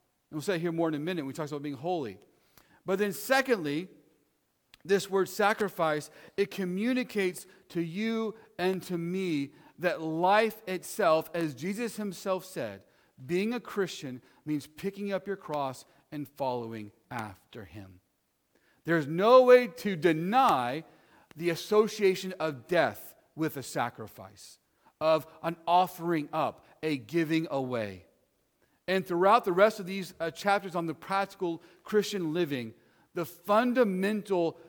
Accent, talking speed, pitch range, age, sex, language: American, 135 wpm, 145-195 Hz, 40-59, male, English